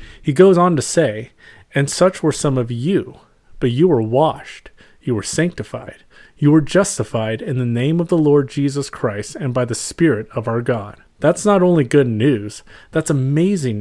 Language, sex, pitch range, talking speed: English, male, 120-160 Hz, 185 wpm